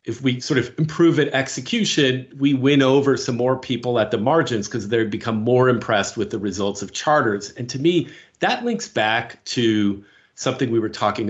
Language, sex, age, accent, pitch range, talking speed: English, male, 40-59, American, 110-145 Hz, 195 wpm